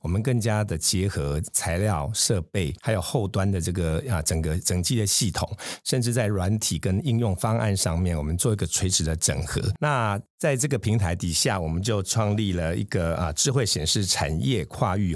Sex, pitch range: male, 90-115 Hz